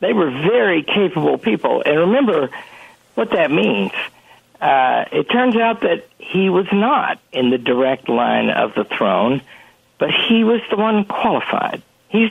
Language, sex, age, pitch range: English, male, 60-79, 160-230 Hz